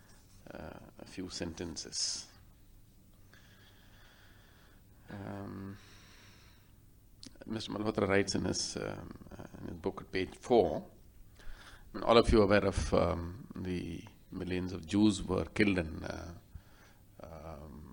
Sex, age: male, 50-69